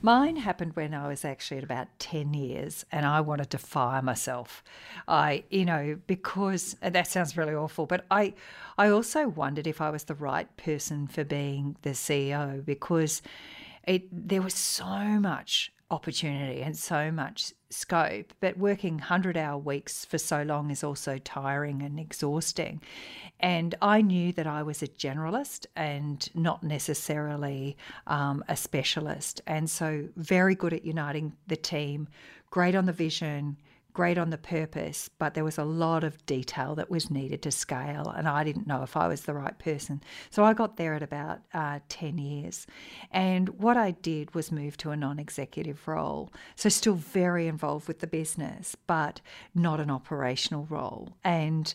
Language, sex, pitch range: English, female, 145-180 Hz